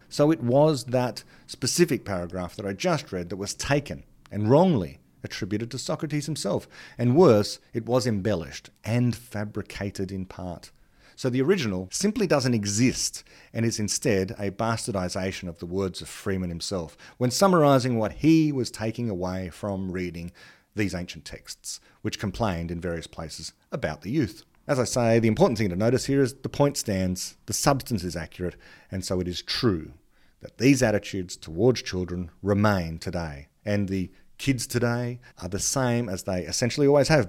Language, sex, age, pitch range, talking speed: English, male, 40-59, 95-125 Hz, 170 wpm